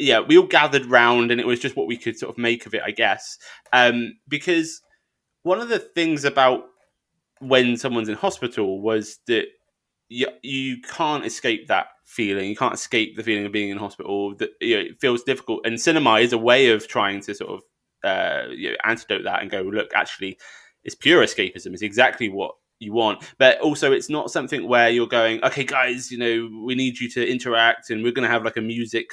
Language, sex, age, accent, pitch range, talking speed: English, male, 20-39, British, 110-135 Hz, 215 wpm